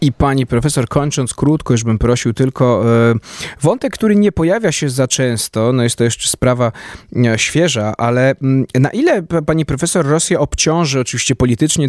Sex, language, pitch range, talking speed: male, Polish, 120-155 Hz, 155 wpm